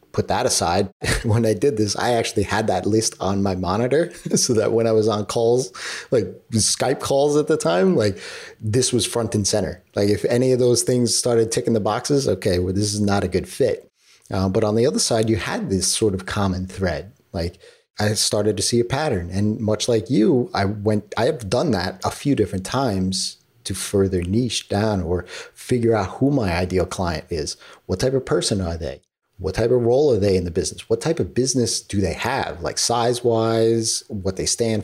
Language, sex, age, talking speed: English, male, 30-49, 215 wpm